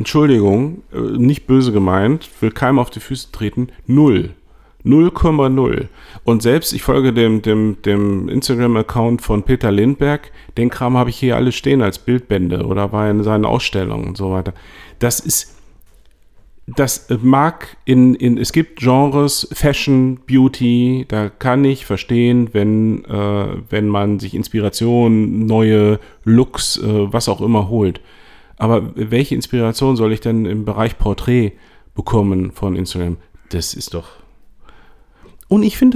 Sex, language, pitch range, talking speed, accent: male, German, 105-140 Hz, 140 wpm, German